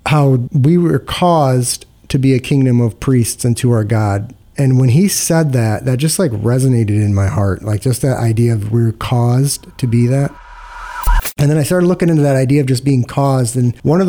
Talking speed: 220 wpm